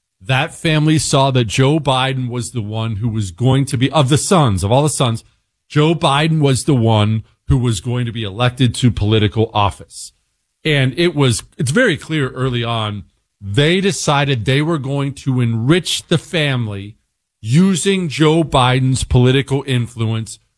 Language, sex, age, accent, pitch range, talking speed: English, male, 40-59, American, 110-160 Hz, 165 wpm